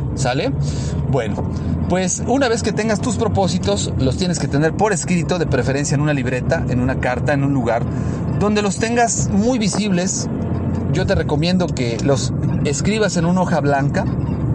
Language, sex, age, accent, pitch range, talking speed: Spanish, male, 40-59, Mexican, 135-180 Hz, 170 wpm